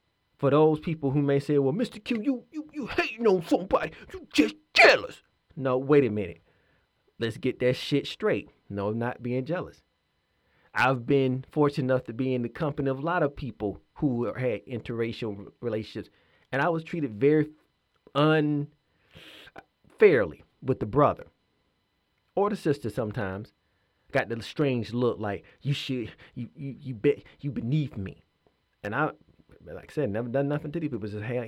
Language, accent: English, American